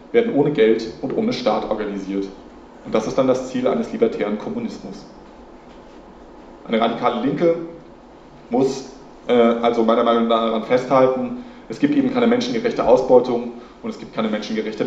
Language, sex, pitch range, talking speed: German, male, 115-155 Hz, 155 wpm